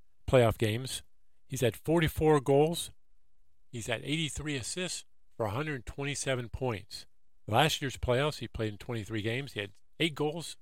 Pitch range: 100-145 Hz